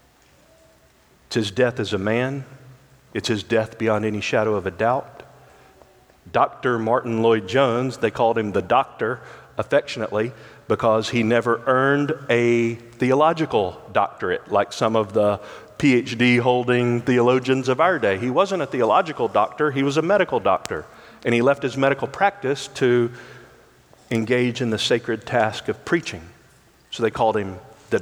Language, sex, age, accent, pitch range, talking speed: English, male, 50-69, American, 110-135 Hz, 150 wpm